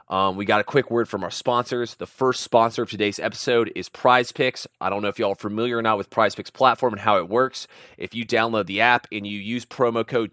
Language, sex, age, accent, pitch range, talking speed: English, male, 30-49, American, 105-120 Hz, 260 wpm